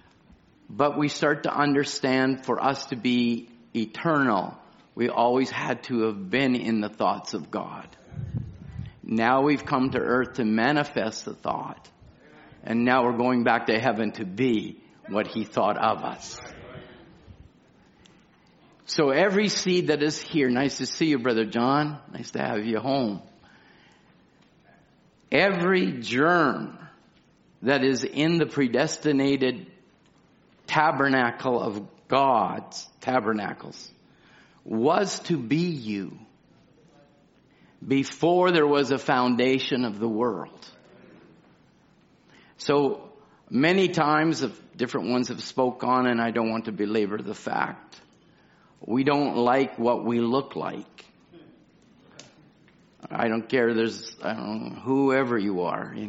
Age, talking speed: 50-69, 125 wpm